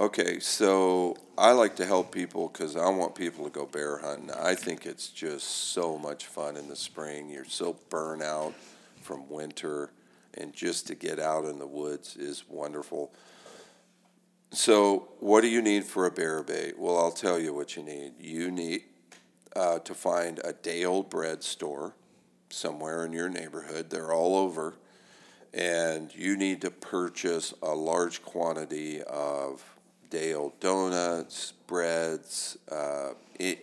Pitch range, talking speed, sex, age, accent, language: 75-95 Hz, 155 wpm, male, 50-69, American, English